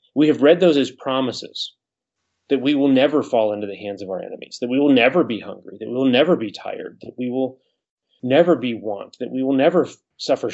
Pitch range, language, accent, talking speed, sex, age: 120-145 Hz, English, American, 235 wpm, male, 30-49